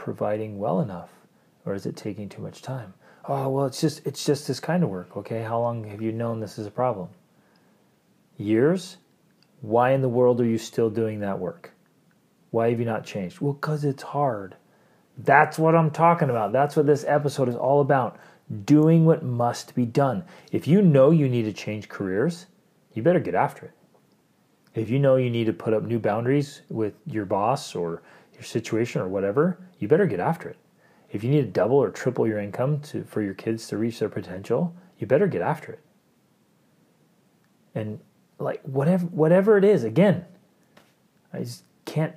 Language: English